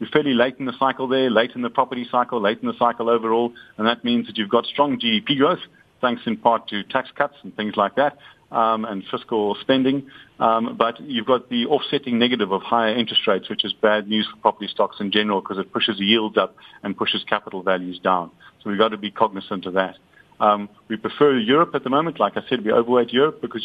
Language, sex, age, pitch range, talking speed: English, male, 50-69, 105-120 Hz, 235 wpm